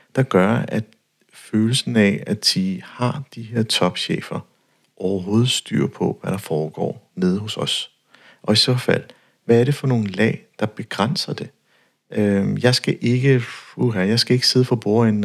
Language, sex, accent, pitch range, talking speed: Danish, male, native, 105-130 Hz, 165 wpm